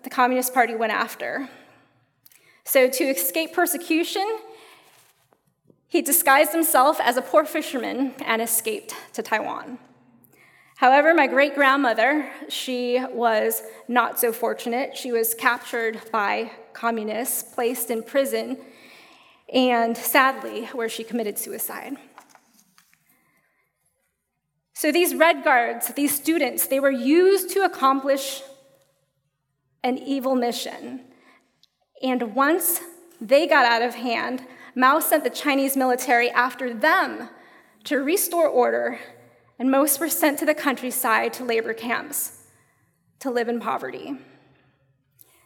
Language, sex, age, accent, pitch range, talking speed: English, female, 20-39, American, 240-320 Hz, 115 wpm